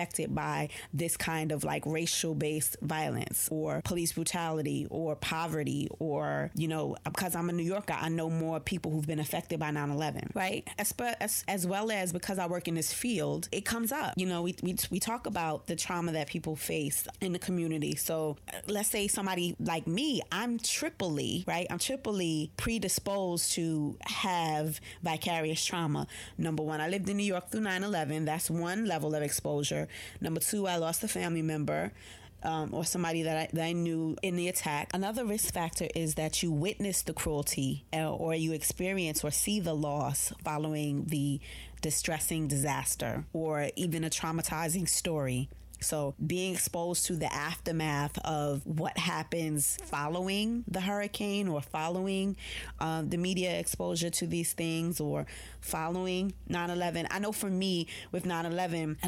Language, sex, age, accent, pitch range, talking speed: English, female, 20-39, American, 155-185 Hz, 165 wpm